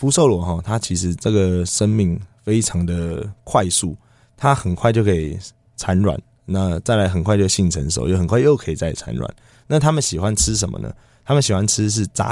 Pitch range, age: 90-115 Hz, 20-39